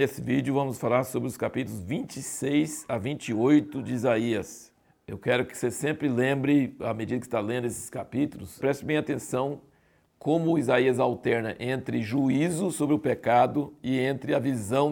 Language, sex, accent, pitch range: Portuguese, male, Brazilian, 125-145 Hz